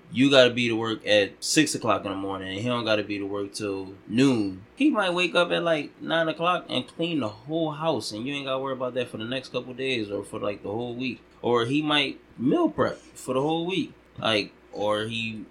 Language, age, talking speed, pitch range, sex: English, 20-39, 250 wpm, 100-130 Hz, male